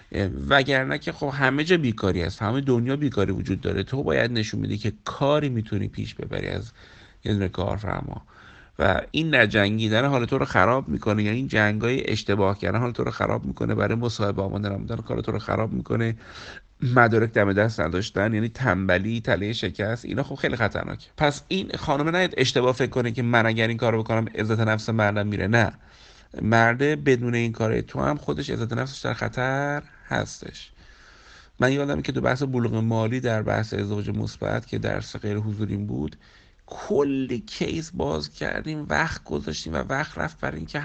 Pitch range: 100-125 Hz